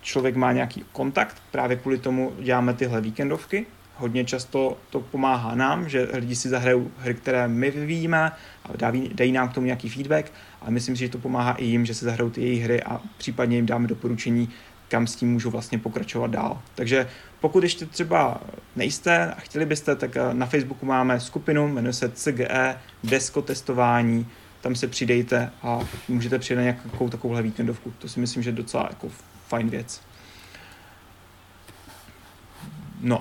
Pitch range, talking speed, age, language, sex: 120-135 Hz, 165 wpm, 30-49, Czech, male